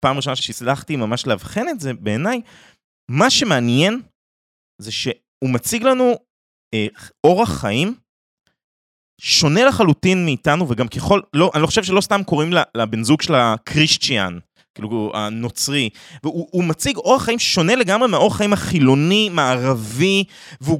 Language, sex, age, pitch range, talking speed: Hebrew, male, 20-39, 130-210 Hz, 135 wpm